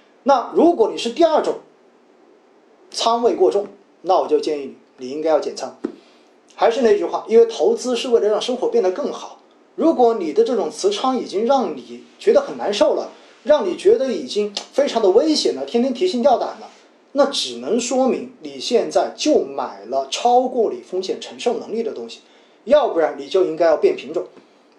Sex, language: male, Chinese